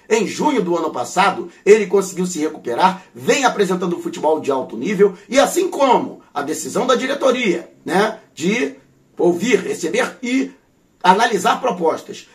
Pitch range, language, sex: 185-255 Hz, Portuguese, male